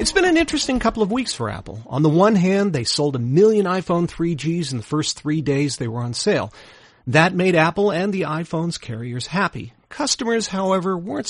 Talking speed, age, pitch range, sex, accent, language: 205 wpm, 40-59, 130-190 Hz, male, American, English